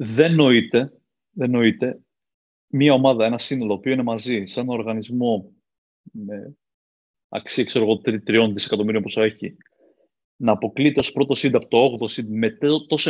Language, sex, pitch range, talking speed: English, male, 115-160 Hz, 140 wpm